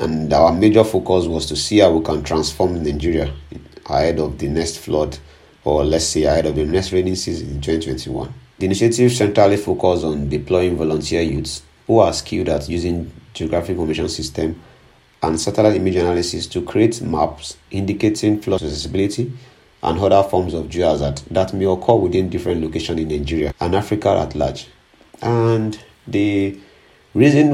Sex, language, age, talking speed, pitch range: male, English, 50-69, 160 wpm, 80-100 Hz